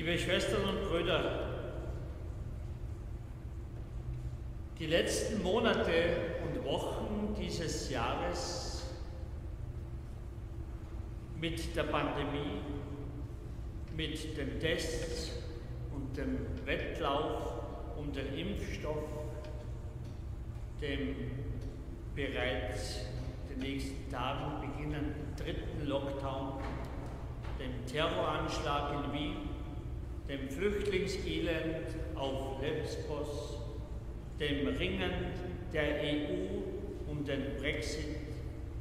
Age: 50-69